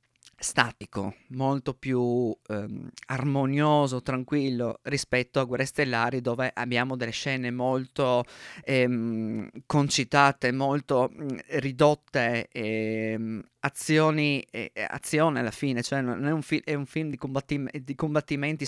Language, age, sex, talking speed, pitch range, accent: Italian, 20-39, male, 120 wpm, 125-175 Hz, native